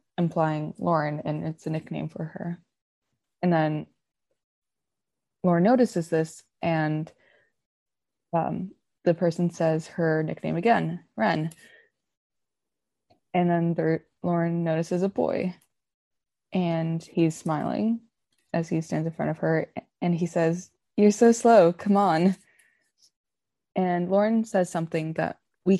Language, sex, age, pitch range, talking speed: English, female, 20-39, 160-185 Hz, 120 wpm